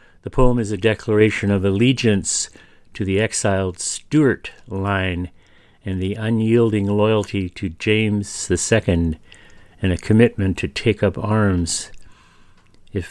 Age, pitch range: 50-69, 95-110 Hz